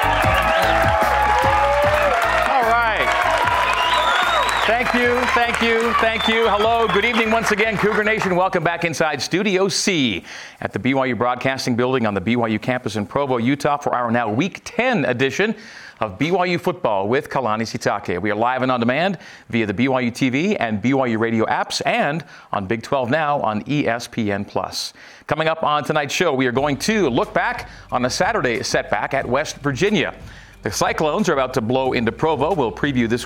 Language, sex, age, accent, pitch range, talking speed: English, male, 40-59, American, 115-170 Hz, 170 wpm